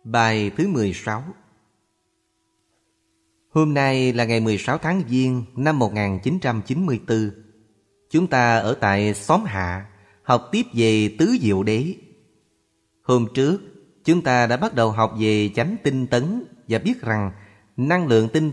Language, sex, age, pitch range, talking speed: Vietnamese, male, 30-49, 110-140 Hz, 135 wpm